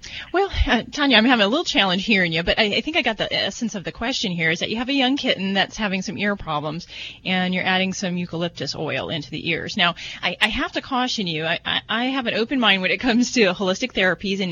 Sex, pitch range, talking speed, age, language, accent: female, 170-220 Hz, 265 wpm, 30-49, English, American